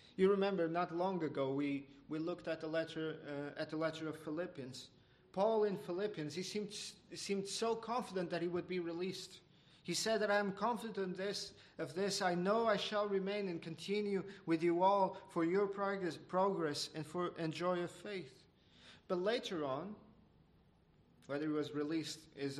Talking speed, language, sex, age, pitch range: 180 wpm, English, male, 40-59, 150-180 Hz